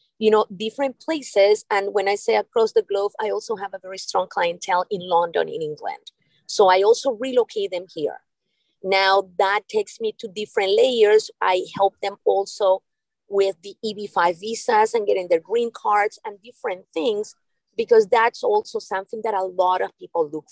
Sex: female